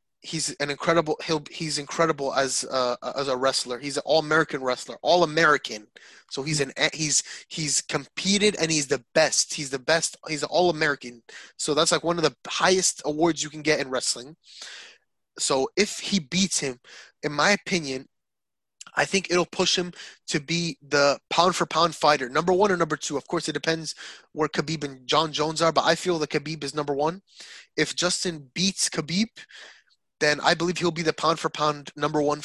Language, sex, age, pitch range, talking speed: English, male, 20-39, 150-180 Hz, 190 wpm